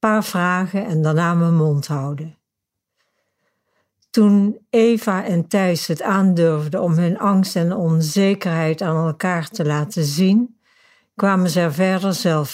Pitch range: 160-200 Hz